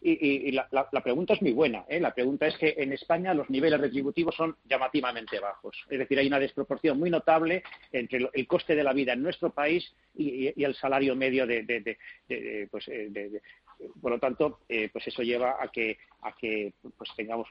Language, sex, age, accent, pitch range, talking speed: Spanish, male, 40-59, Spanish, 135-185 Hz, 225 wpm